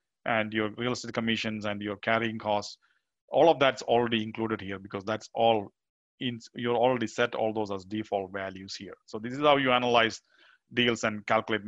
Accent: Indian